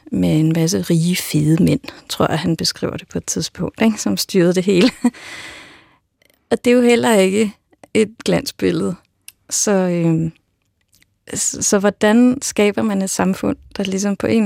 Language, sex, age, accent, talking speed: Danish, female, 30-49, native, 165 wpm